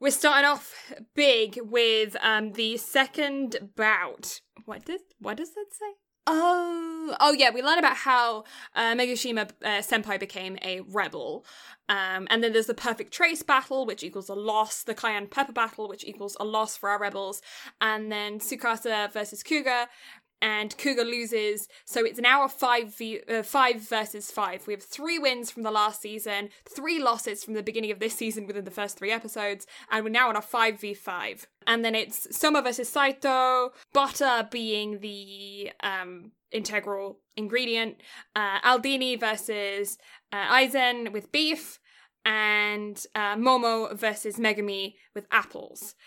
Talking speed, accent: 160 wpm, British